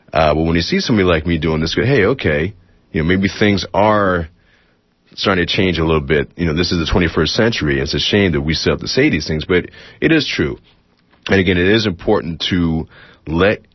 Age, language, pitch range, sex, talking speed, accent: 30-49, English, 75-95 Hz, male, 230 wpm, American